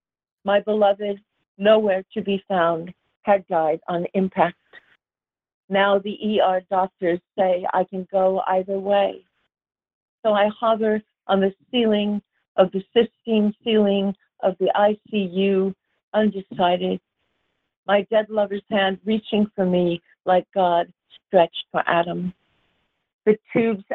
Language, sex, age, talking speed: English, female, 50-69, 120 wpm